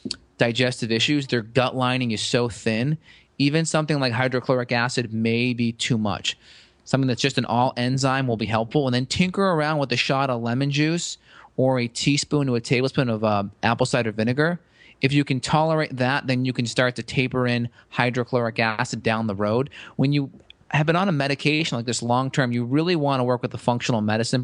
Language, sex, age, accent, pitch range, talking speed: English, male, 30-49, American, 120-140 Hz, 205 wpm